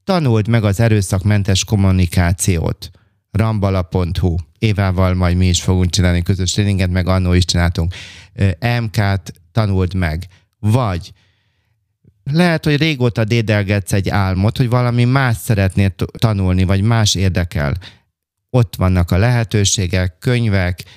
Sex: male